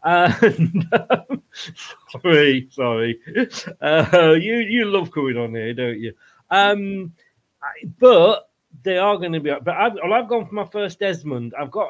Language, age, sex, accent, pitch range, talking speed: English, 40-59, male, British, 125-170 Hz, 155 wpm